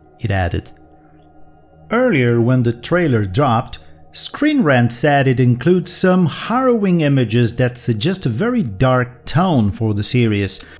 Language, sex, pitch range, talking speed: Portuguese, male, 115-165 Hz, 135 wpm